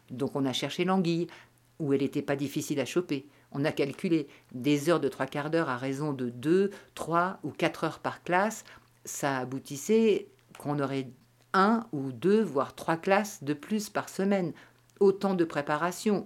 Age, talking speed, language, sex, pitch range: 50-69, 175 wpm, French, female, 130-175 Hz